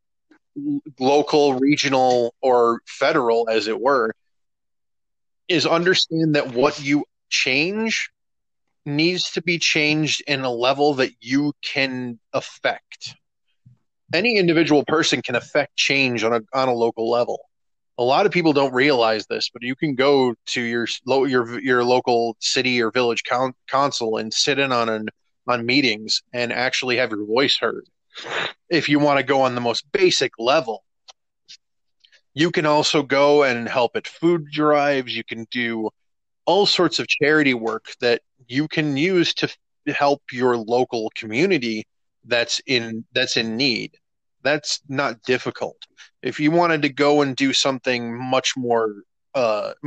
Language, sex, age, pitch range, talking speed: English, male, 20-39, 120-150 Hz, 150 wpm